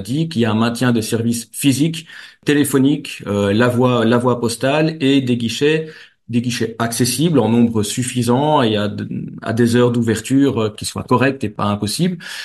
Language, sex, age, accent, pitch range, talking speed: French, male, 40-59, French, 115-140 Hz, 185 wpm